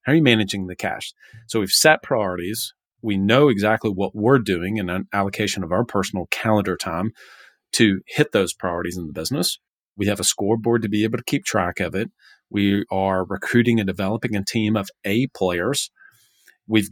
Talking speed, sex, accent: 190 wpm, male, American